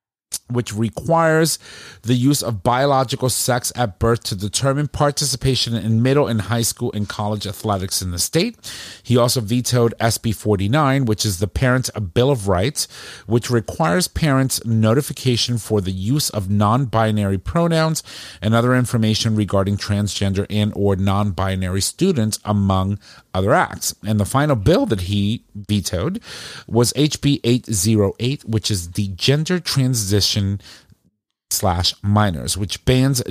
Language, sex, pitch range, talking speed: English, male, 100-130 Hz, 135 wpm